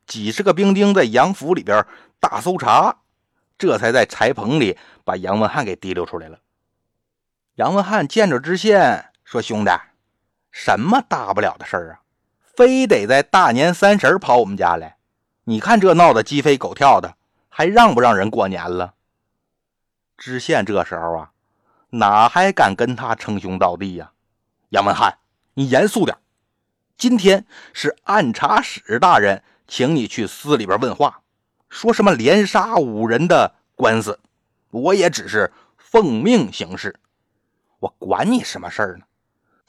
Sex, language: male, Chinese